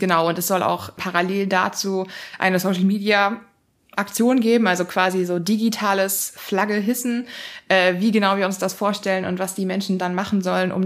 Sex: female